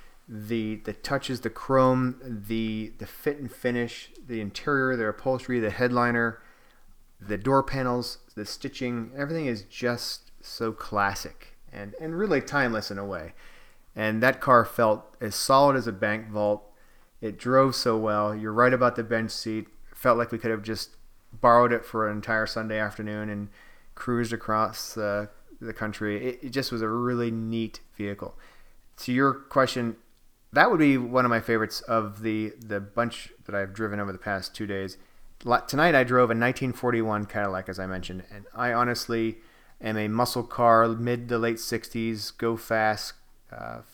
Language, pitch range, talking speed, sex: English, 105-125 Hz, 170 wpm, male